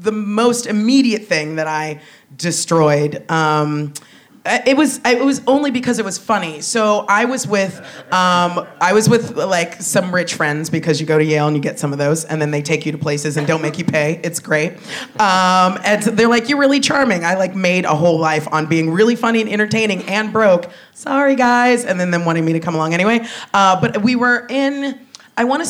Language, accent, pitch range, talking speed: English, American, 165-225 Hz, 220 wpm